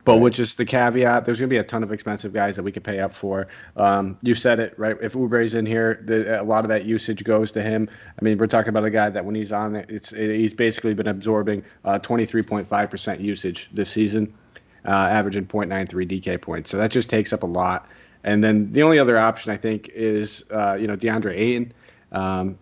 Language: English